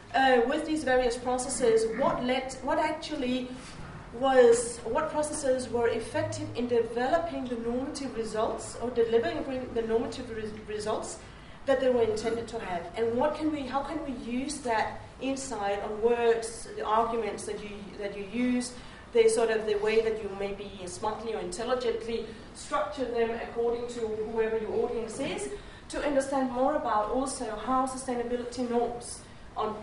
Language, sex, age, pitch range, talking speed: English, female, 40-59, 220-260 Hz, 155 wpm